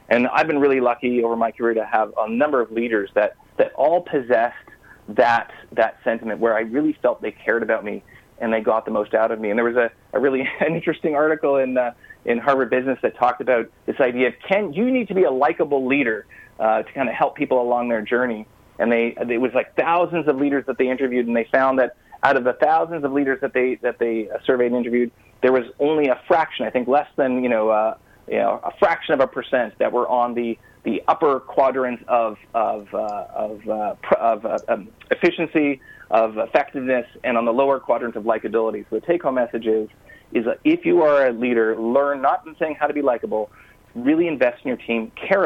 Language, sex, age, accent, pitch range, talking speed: English, male, 30-49, American, 115-140 Hz, 230 wpm